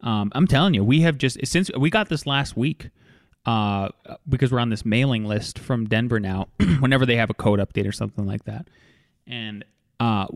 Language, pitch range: English, 110-150 Hz